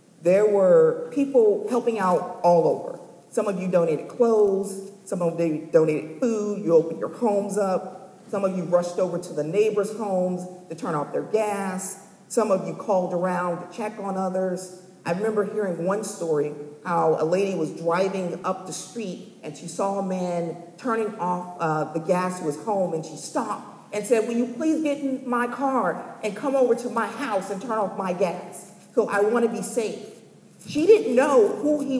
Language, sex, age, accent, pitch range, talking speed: English, female, 50-69, American, 180-230 Hz, 195 wpm